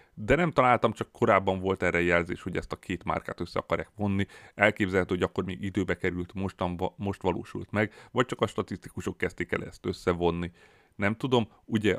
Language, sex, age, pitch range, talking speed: Hungarian, male, 30-49, 90-105 Hz, 180 wpm